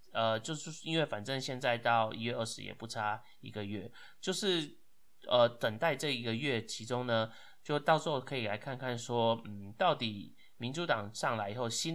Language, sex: Chinese, male